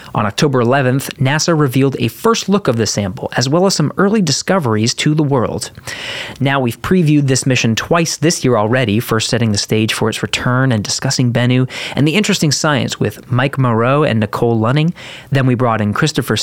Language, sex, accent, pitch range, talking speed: English, male, American, 115-155 Hz, 195 wpm